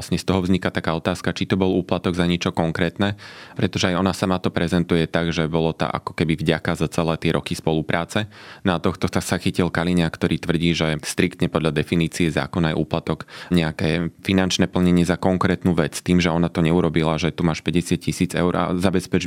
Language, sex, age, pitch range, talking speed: Slovak, male, 20-39, 85-95 Hz, 200 wpm